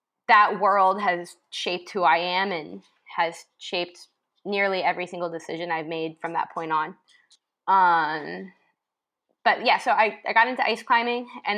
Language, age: English, 20-39